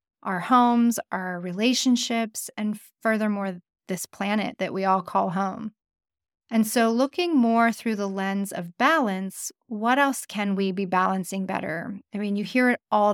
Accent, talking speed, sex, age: American, 160 wpm, female, 30-49